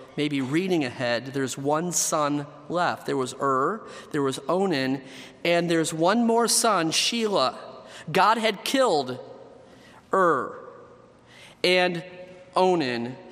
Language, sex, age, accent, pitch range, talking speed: English, male, 40-59, American, 150-195 Hz, 115 wpm